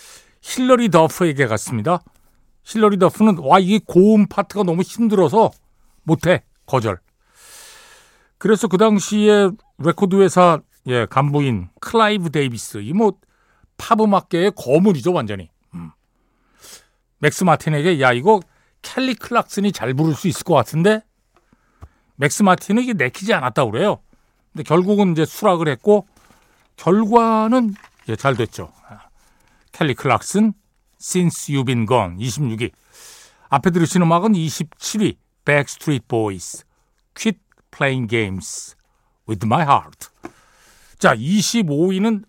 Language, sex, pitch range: Korean, male, 140-210 Hz